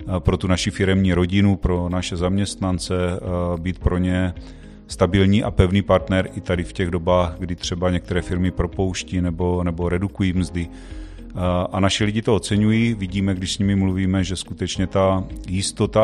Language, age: Czech, 40-59